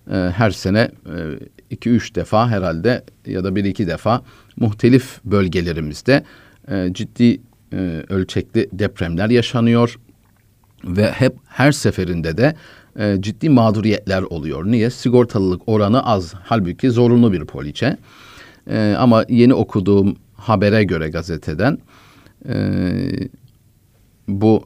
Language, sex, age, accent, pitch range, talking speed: Turkish, male, 50-69, native, 95-120 Hz, 110 wpm